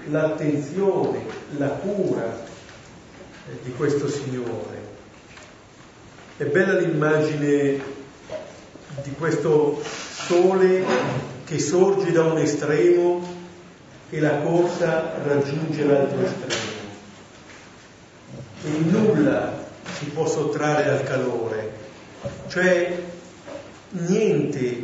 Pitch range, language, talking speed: 140-175 Hz, Italian, 75 wpm